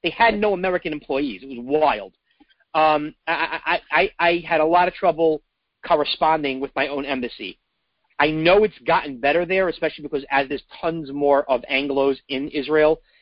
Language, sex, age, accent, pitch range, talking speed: English, male, 40-59, American, 150-230 Hz, 175 wpm